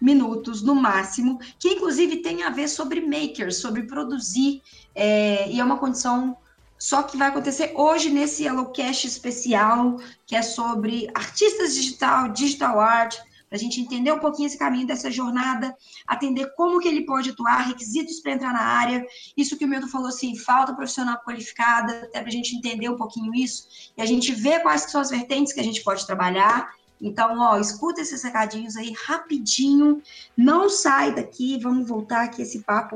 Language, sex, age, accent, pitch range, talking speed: Portuguese, female, 20-39, Brazilian, 225-285 Hz, 180 wpm